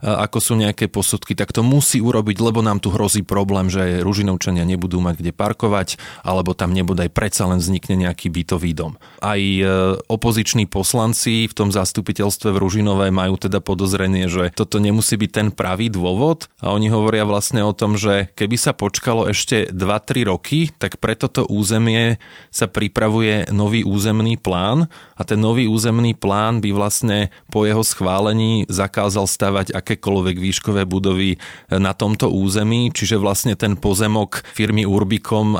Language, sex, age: Slovak, male, 20-39